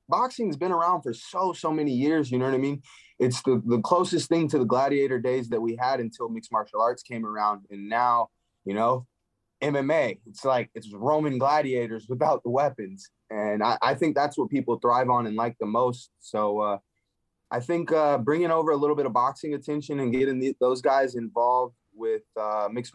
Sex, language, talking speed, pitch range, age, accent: male, English, 205 wpm, 115-155 Hz, 20-39, American